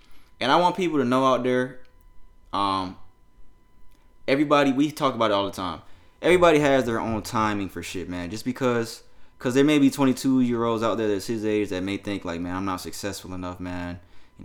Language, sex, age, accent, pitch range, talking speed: English, male, 20-39, American, 95-120 Hz, 200 wpm